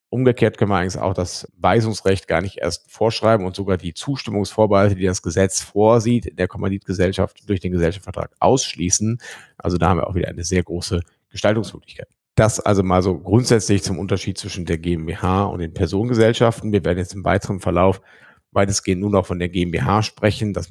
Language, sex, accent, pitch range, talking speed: German, male, German, 95-125 Hz, 185 wpm